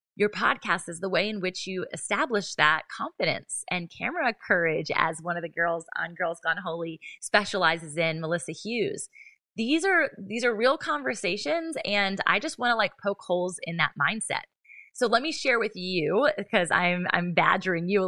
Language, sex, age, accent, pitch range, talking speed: English, female, 20-39, American, 175-205 Hz, 185 wpm